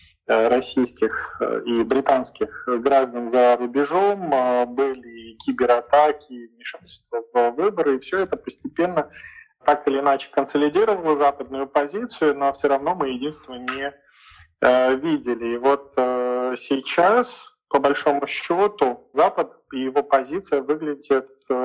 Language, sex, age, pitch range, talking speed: Russian, male, 20-39, 125-145 Hz, 110 wpm